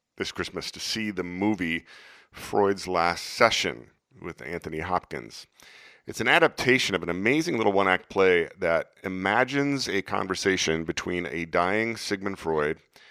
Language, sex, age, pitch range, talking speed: English, male, 40-59, 80-95 Hz, 135 wpm